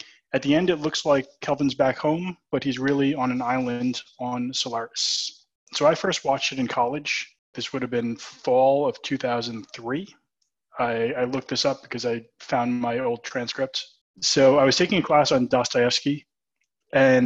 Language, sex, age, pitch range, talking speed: English, male, 20-39, 120-140 Hz, 175 wpm